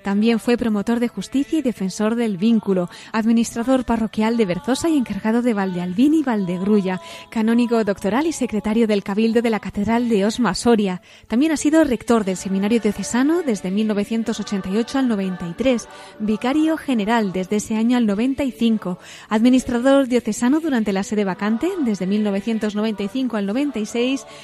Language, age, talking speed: Spanish, 20-39, 145 wpm